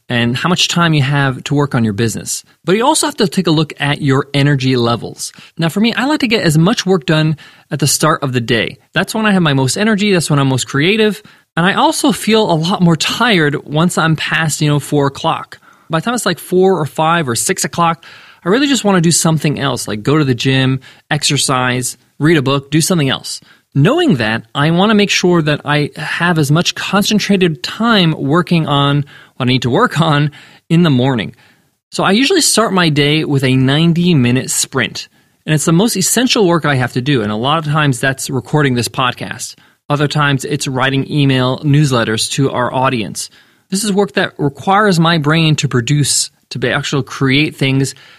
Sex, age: male, 20-39